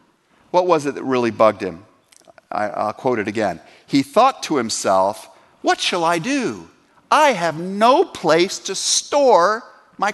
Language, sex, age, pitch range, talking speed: English, male, 50-69, 155-240 Hz, 155 wpm